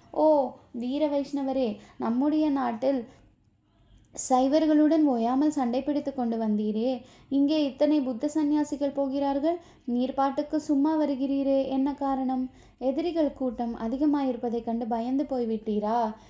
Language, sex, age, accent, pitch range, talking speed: Tamil, female, 20-39, native, 240-285 Hz, 100 wpm